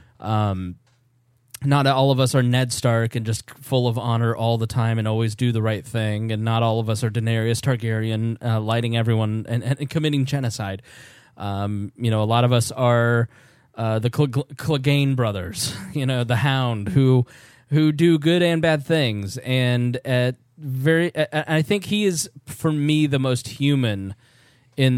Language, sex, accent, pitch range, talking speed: English, male, American, 115-140 Hz, 185 wpm